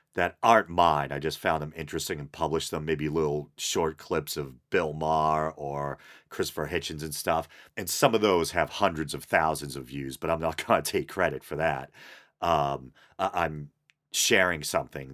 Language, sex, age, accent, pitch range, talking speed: English, male, 40-59, American, 70-80 Hz, 180 wpm